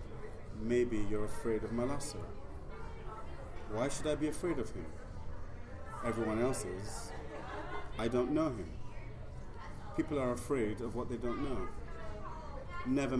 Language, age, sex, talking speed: English, 30-49, male, 125 wpm